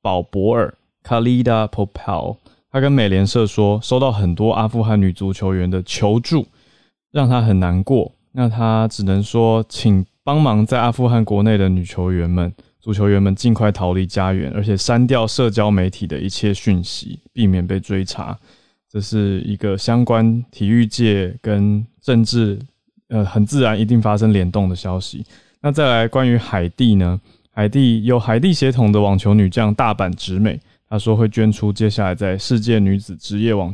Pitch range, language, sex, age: 100-115 Hz, Chinese, male, 20-39